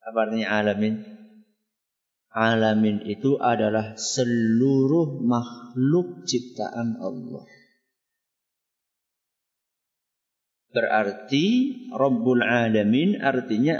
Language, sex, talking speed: Malay, male, 55 wpm